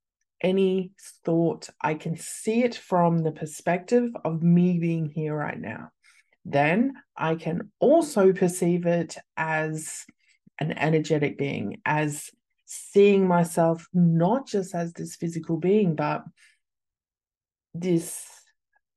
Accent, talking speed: Australian, 115 wpm